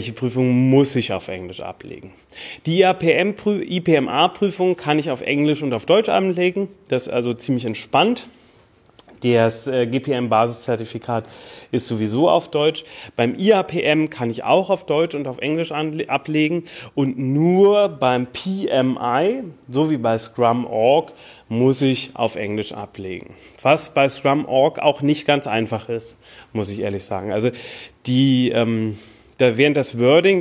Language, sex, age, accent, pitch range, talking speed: German, male, 30-49, German, 120-150 Hz, 145 wpm